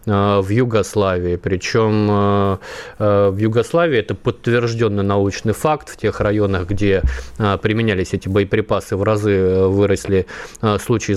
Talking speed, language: 105 wpm, Russian